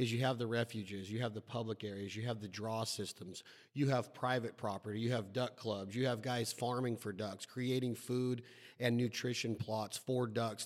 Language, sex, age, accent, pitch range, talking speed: English, male, 30-49, American, 115-140 Hz, 205 wpm